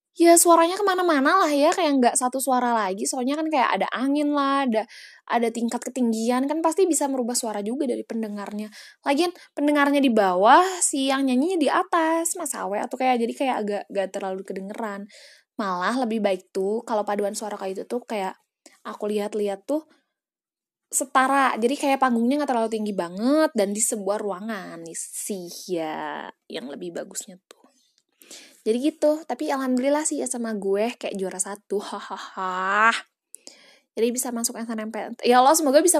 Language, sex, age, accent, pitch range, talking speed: Indonesian, female, 20-39, native, 220-290 Hz, 165 wpm